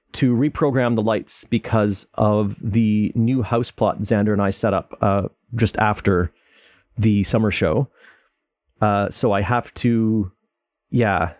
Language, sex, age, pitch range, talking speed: English, male, 30-49, 105-130 Hz, 140 wpm